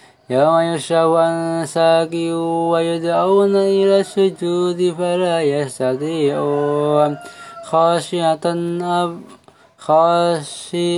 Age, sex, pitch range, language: 20-39, male, 145-175 Hz, Arabic